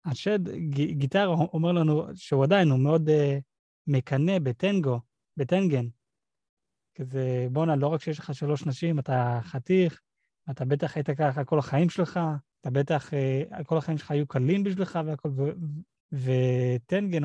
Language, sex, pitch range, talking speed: Hebrew, male, 135-160 Hz, 135 wpm